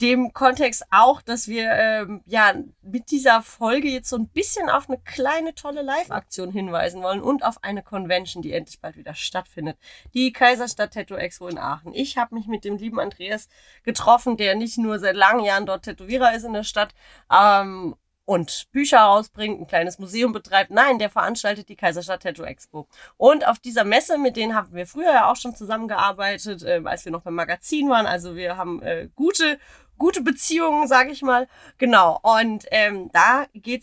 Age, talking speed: 30-49, 180 wpm